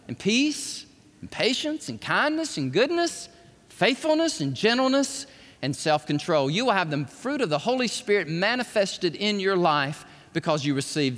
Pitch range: 145-210 Hz